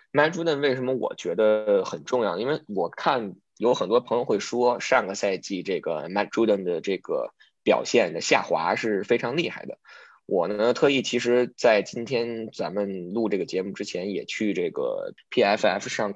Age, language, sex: 20-39, Chinese, male